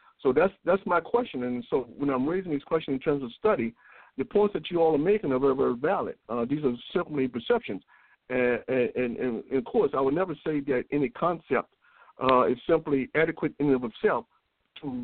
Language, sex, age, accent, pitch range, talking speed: English, male, 60-79, American, 135-195 Hz, 215 wpm